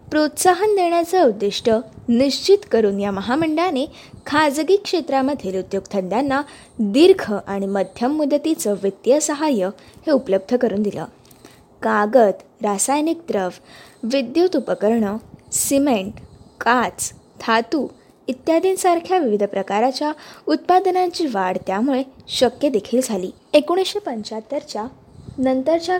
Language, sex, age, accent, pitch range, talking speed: Marathi, female, 20-39, native, 215-325 Hz, 90 wpm